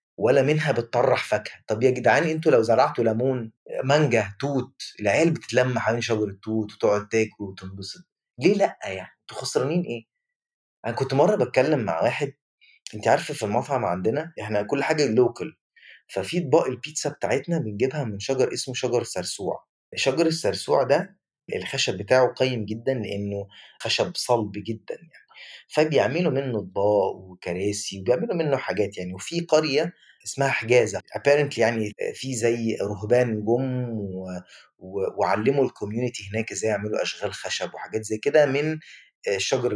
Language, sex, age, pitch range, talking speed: Arabic, male, 20-39, 110-150 Hz, 145 wpm